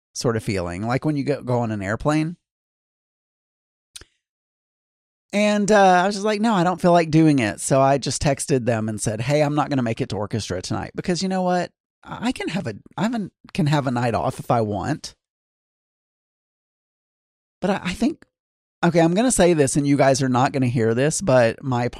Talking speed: 215 wpm